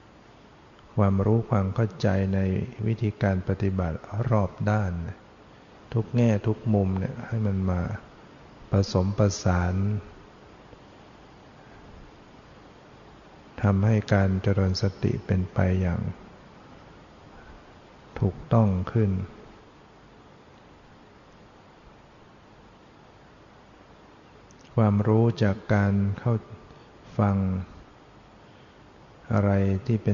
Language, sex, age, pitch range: Thai, male, 60-79, 95-110 Hz